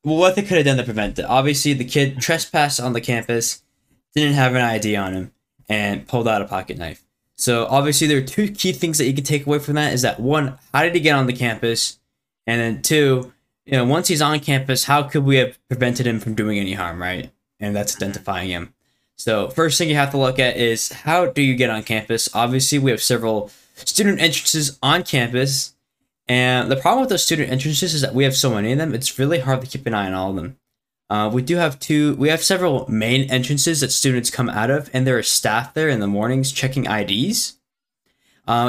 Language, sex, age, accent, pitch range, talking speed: English, male, 10-29, American, 115-145 Hz, 235 wpm